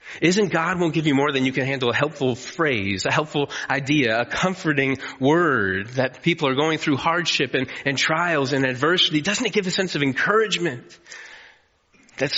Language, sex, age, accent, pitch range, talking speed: English, male, 30-49, American, 120-160 Hz, 185 wpm